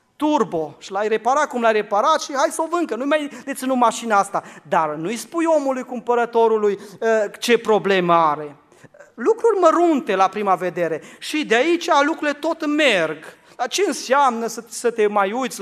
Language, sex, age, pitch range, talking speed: Romanian, male, 40-59, 185-270 Hz, 165 wpm